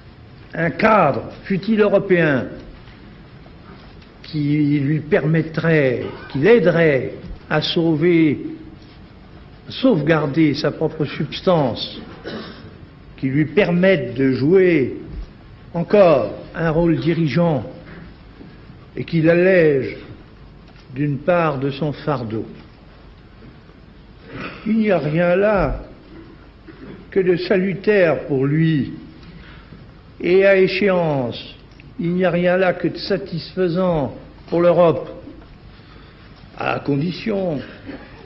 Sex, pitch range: male, 140-185 Hz